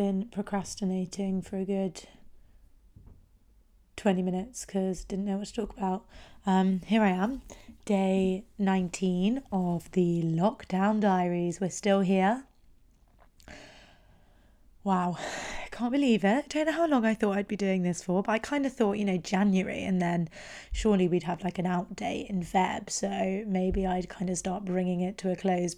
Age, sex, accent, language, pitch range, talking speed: 20-39, female, British, English, 180-200 Hz, 170 wpm